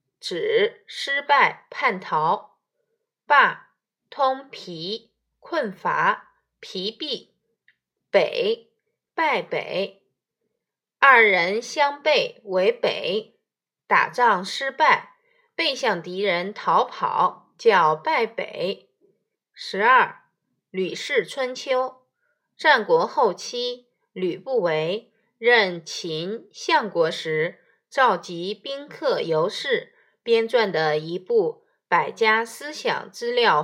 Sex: female